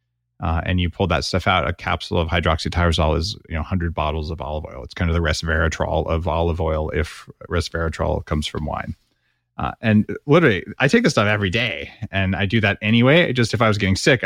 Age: 30-49